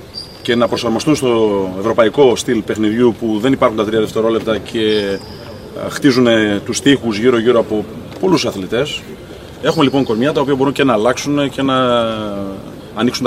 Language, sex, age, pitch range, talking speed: Greek, male, 30-49, 110-135 Hz, 155 wpm